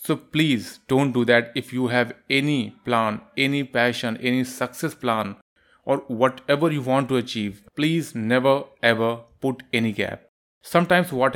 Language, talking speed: Hindi, 155 wpm